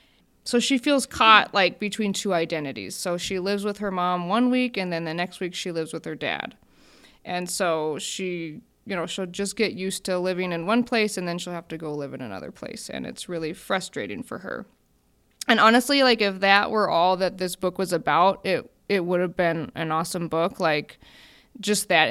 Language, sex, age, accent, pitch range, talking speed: English, female, 20-39, American, 170-200 Hz, 215 wpm